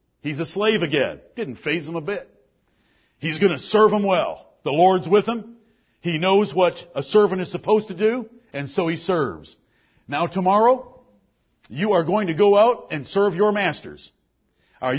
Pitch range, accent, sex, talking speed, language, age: 165-220 Hz, American, male, 180 wpm, English, 50-69